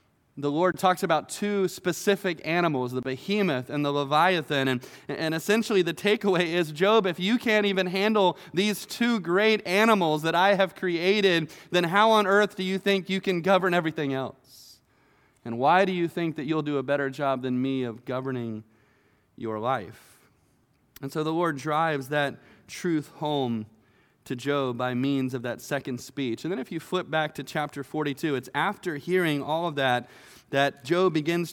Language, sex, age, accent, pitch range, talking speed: English, male, 20-39, American, 135-220 Hz, 180 wpm